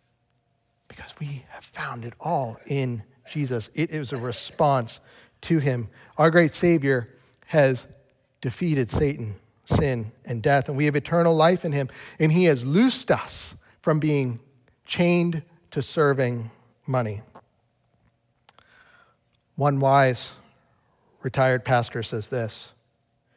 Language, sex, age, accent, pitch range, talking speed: English, male, 40-59, American, 125-170 Hz, 120 wpm